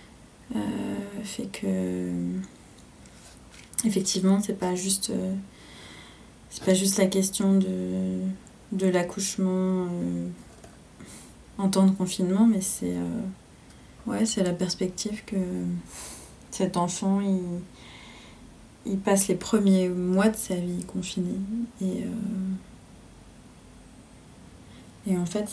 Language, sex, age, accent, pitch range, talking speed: French, female, 20-39, French, 180-200 Hz, 110 wpm